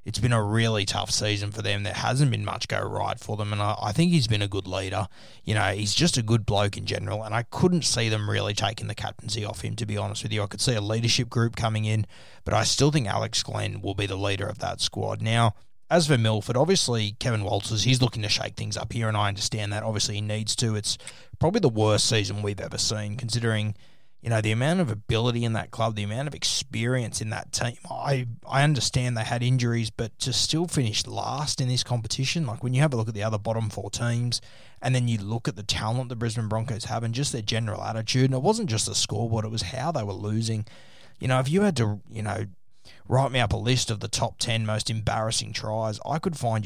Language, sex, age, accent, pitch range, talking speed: English, male, 20-39, Australian, 105-125 Hz, 250 wpm